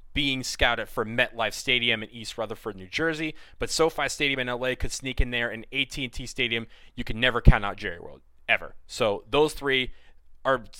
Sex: male